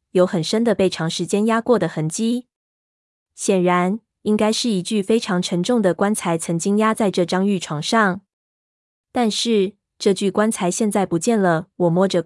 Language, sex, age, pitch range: Chinese, female, 20-39, 175-210 Hz